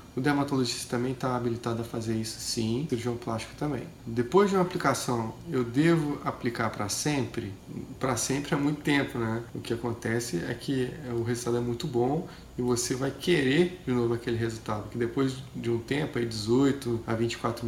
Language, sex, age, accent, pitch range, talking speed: Portuguese, male, 20-39, Brazilian, 120-145 Hz, 185 wpm